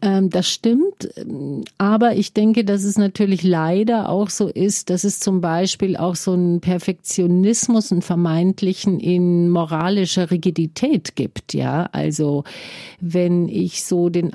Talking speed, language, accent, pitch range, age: 135 wpm, German, German, 170-195 Hz, 50-69